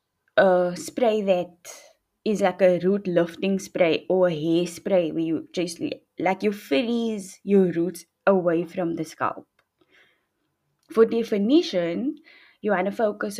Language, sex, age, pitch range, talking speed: English, female, 20-39, 175-220 Hz, 135 wpm